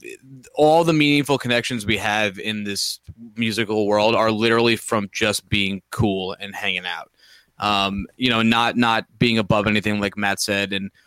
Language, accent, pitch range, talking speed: English, American, 105-130 Hz, 170 wpm